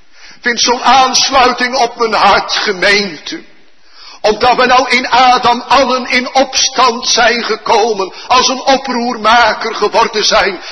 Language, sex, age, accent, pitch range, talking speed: Dutch, male, 50-69, Dutch, 190-255 Hz, 125 wpm